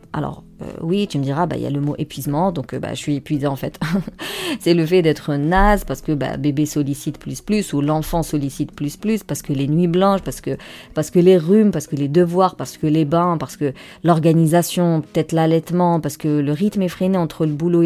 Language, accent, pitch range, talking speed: French, French, 150-180 Hz, 235 wpm